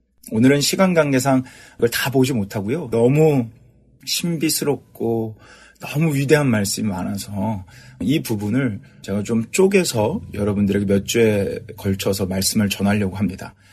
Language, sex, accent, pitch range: Korean, male, native, 105-145 Hz